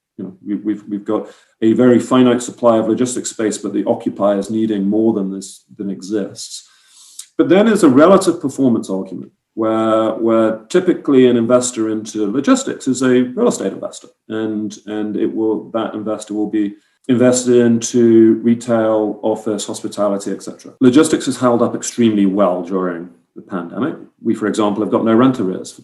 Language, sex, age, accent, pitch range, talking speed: English, male, 40-59, British, 100-125 Hz, 165 wpm